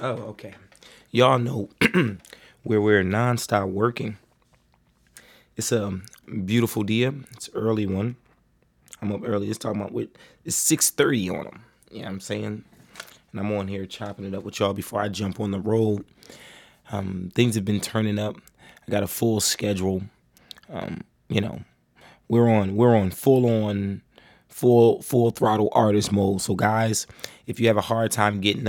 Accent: American